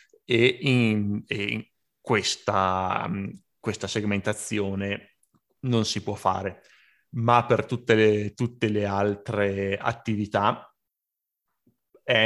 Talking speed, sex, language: 100 wpm, male, Italian